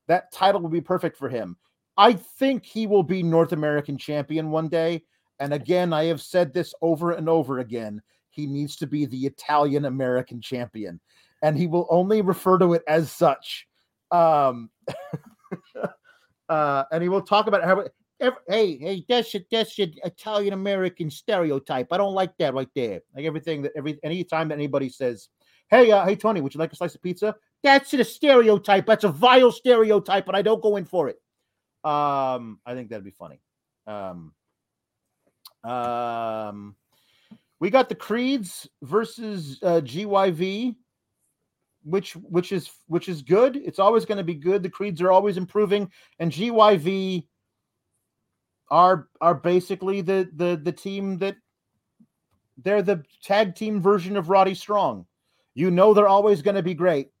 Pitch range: 150-200 Hz